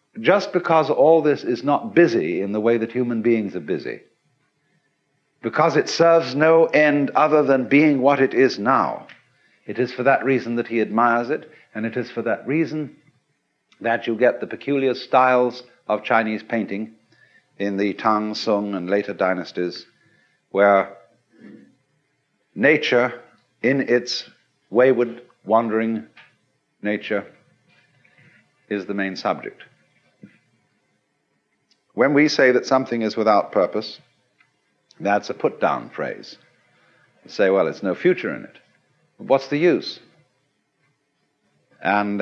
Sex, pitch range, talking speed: male, 105-140 Hz, 130 wpm